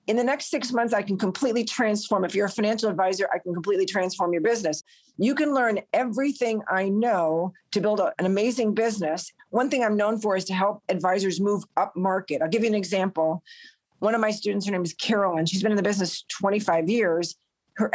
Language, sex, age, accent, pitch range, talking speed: English, female, 40-59, American, 185-230 Hz, 215 wpm